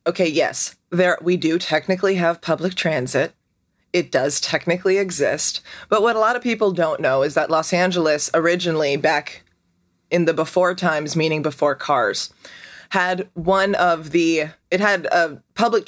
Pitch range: 160-200 Hz